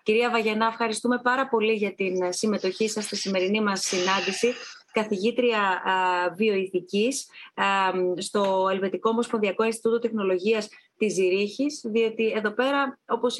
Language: Greek